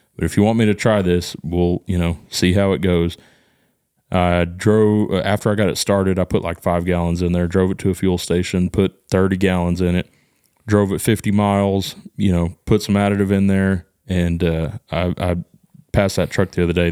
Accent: American